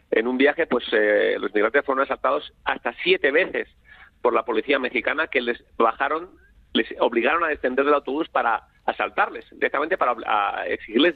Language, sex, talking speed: Spanish, male, 160 wpm